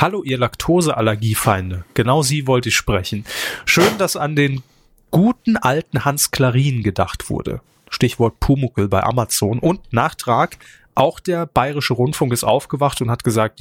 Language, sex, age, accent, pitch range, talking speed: German, male, 30-49, German, 115-150 Hz, 145 wpm